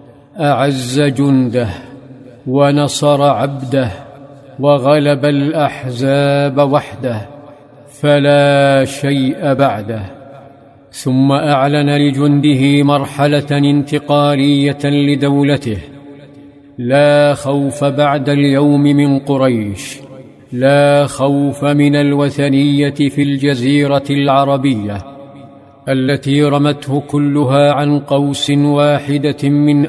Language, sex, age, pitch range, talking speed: Arabic, male, 50-69, 135-145 Hz, 70 wpm